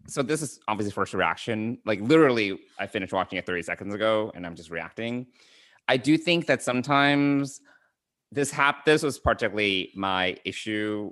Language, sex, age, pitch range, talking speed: English, male, 20-39, 95-130 Hz, 165 wpm